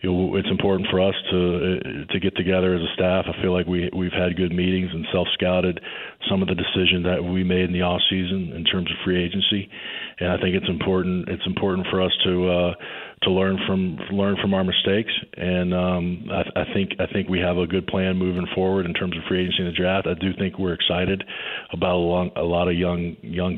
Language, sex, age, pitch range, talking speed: English, male, 40-59, 90-95 Hz, 225 wpm